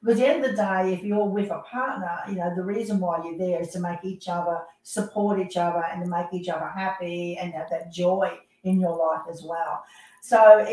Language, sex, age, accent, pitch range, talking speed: English, female, 50-69, Australian, 175-210 Hz, 240 wpm